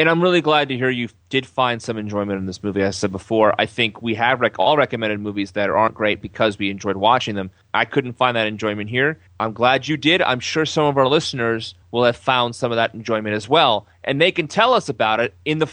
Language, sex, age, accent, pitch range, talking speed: English, male, 30-49, American, 110-155 Hz, 260 wpm